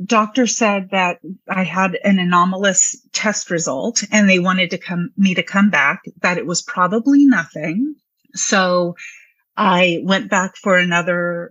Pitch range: 180-220 Hz